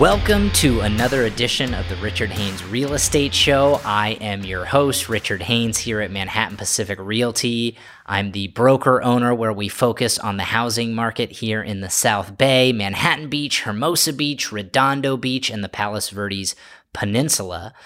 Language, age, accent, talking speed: English, 30-49, American, 160 wpm